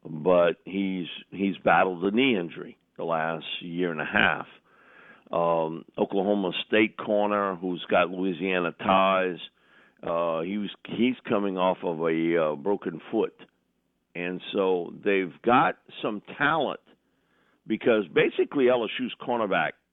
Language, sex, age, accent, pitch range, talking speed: English, male, 50-69, American, 85-105 Hz, 125 wpm